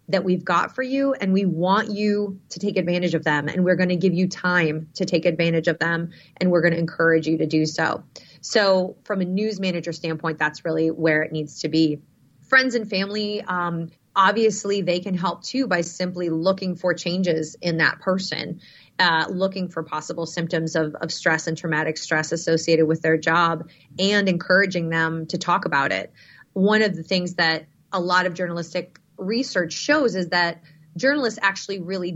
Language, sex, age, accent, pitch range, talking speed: English, female, 30-49, American, 165-195 Hz, 190 wpm